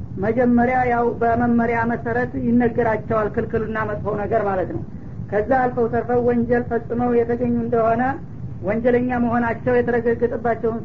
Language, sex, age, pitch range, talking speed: English, female, 50-69, 225-245 Hz, 120 wpm